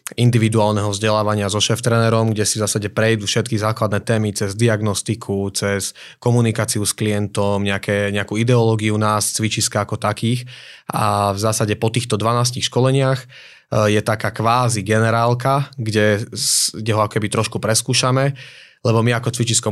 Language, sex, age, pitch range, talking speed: Slovak, male, 20-39, 105-115 Hz, 145 wpm